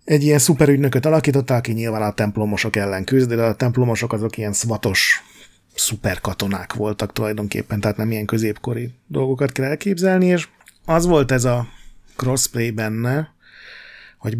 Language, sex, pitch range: Hungarian, male, 105-125 Hz